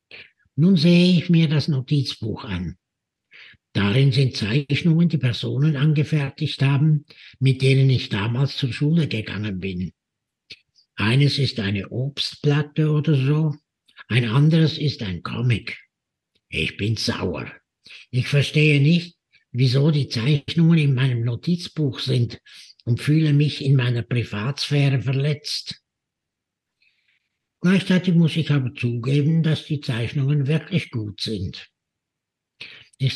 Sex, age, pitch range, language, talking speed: male, 60-79, 120-150 Hz, German, 120 wpm